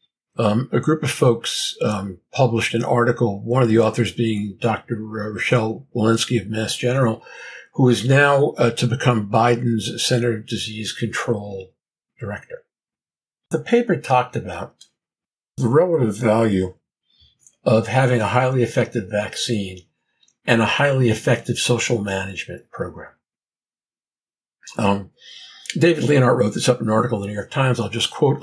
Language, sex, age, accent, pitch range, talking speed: English, male, 50-69, American, 110-130 Hz, 145 wpm